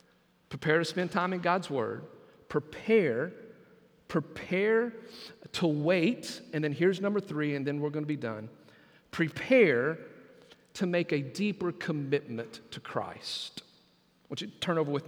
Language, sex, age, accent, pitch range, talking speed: English, male, 40-59, American, 150-180 Hz, 145 wpm